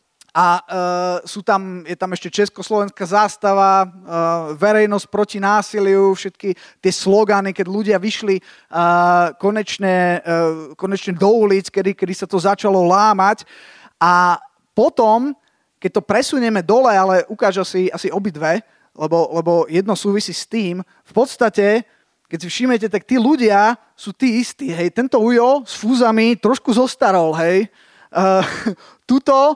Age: 20-39